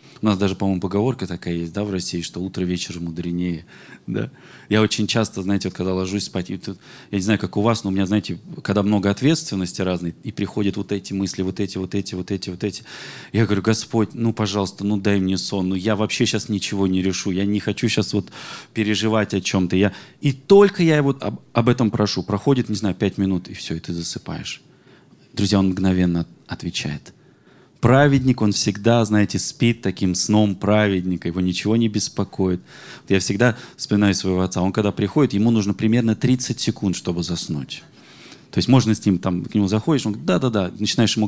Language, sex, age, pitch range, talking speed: Russian, male, 20-39, 95-110 Hz, 200 wpm